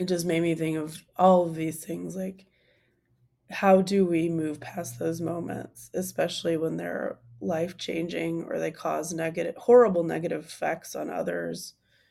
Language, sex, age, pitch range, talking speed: English, female, 20-39, 155-180 Hz, 160 wpm